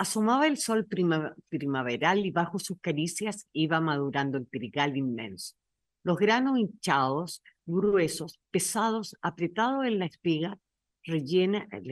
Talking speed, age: 110 wpm, 50-69